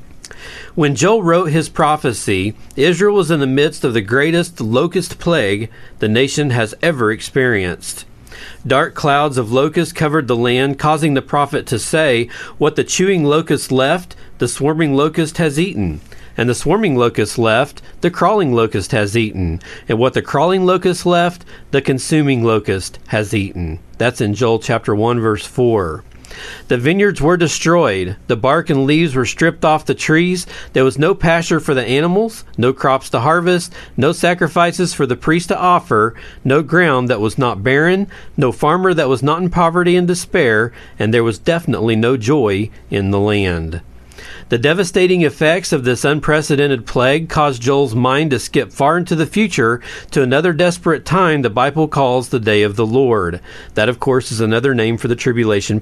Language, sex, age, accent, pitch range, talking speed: English, male, 40-59, American, 115-165 Hz, 175 wpm